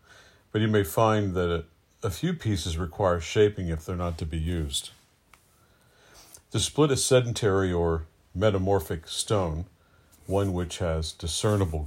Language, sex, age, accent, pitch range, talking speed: English, male, 50-69, American, 85-105 Hz, 140 wpm